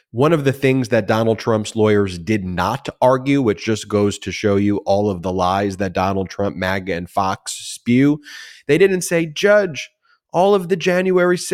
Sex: male